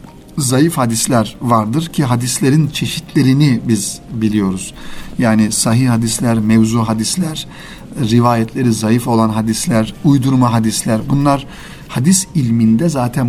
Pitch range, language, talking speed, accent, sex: 115-145 Hz, Turkish, 105 wpm, native, male